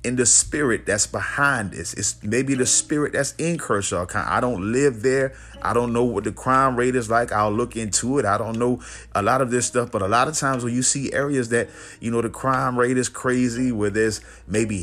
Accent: American